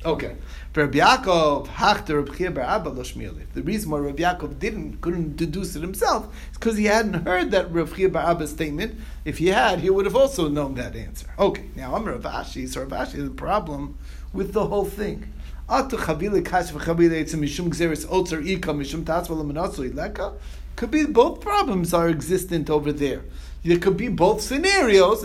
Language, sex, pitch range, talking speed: English, male, 145-195 Hz, 130 wpm